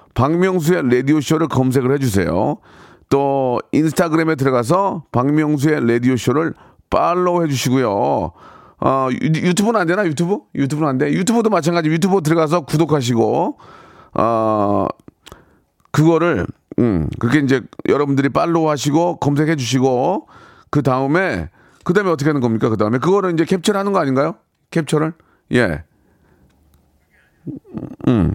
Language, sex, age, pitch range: Korean, male, 40-59, 130-175 Hz